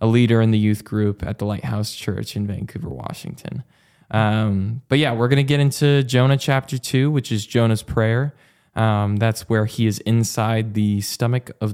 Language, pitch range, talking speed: English, 105-120 Hz, 190 wpm